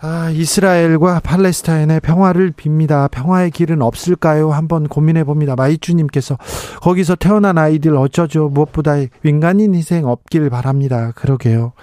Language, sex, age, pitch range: Korean, male, 40-59, 130-165 Hz